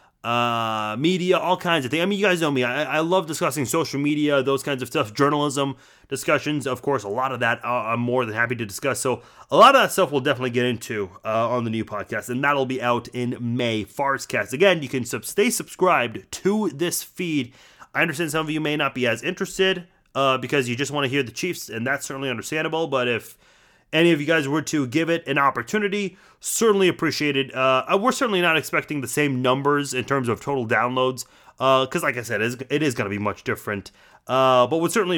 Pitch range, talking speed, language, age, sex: 125-165 Hz, 230 wpm, English, 30-49, male